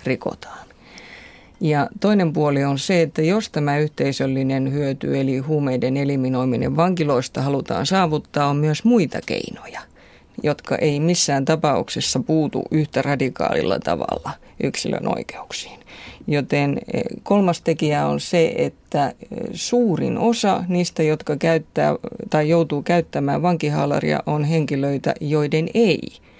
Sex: female